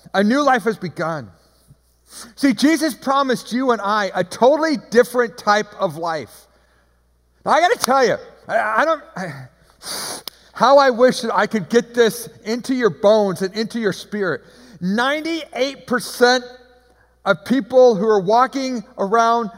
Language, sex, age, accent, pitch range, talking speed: English, male, 50-69, American, 210-295 Hz, 145 wpm